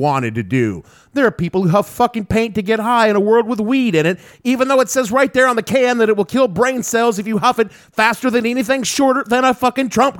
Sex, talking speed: male, 275 wpm